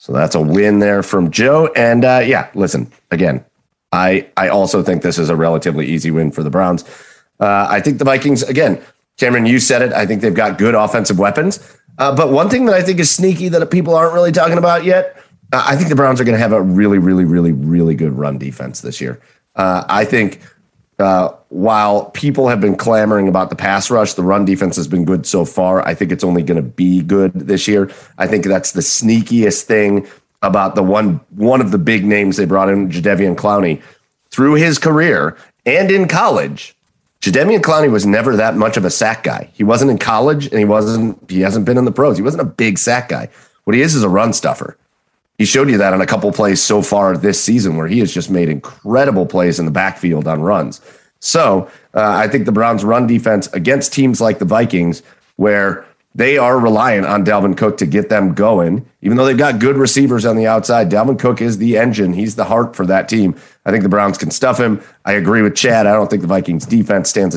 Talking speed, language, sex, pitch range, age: 225 wpm, English, male, 95-130 Hz, 30-49